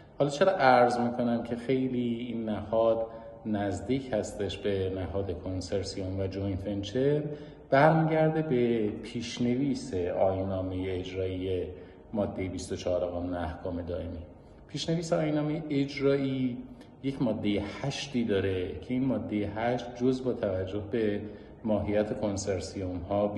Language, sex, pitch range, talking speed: Persian, male, 90-125 Hz, 110 wpm